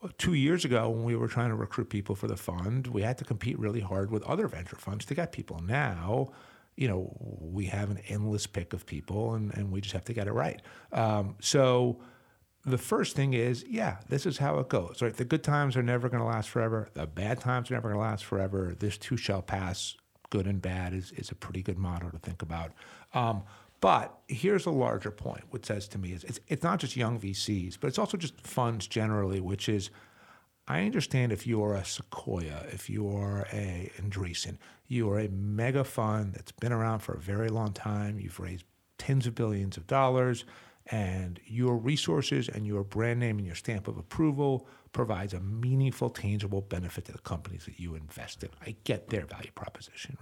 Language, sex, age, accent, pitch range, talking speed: English, male, 50-69, American, 100-125 Hz, 215 wpm